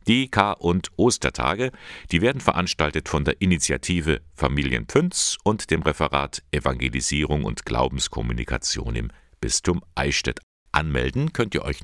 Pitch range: 65-90 Hz